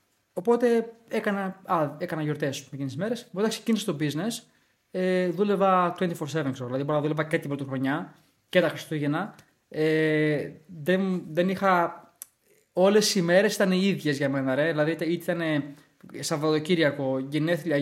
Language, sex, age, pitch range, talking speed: Greek, male, 20-39, 145-195 Hz, 140 wpm